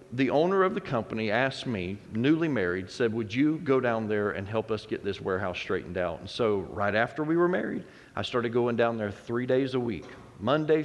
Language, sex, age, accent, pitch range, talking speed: English, male, 40-59, American, 120-150 Hz, 220 wpm